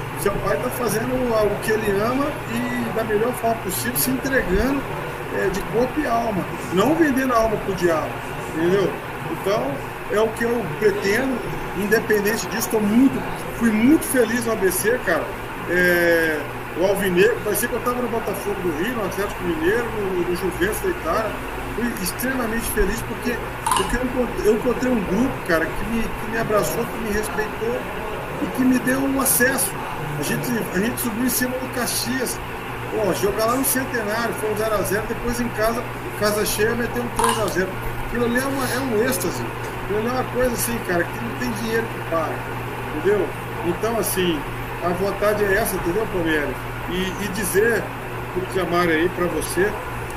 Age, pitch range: 50-69, 175-235 Hz